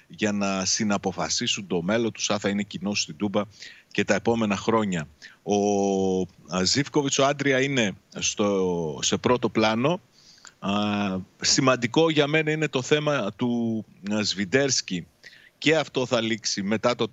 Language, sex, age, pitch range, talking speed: Greek, male, 30-49, 105-140 Hz, 135 wpm